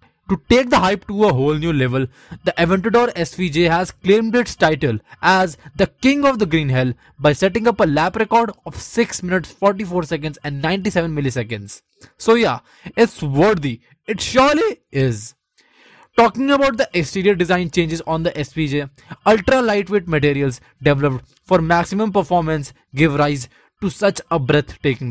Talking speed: 160 wpm